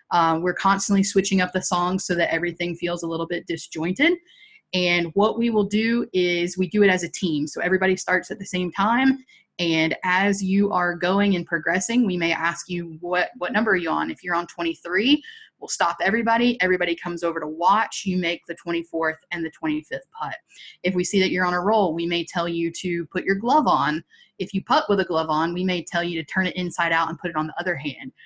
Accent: American